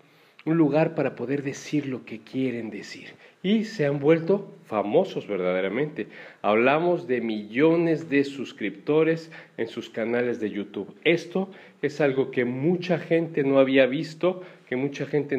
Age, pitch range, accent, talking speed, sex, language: 40-59, 115-150 Hz, Mexican, 145 wpm, male, Spanish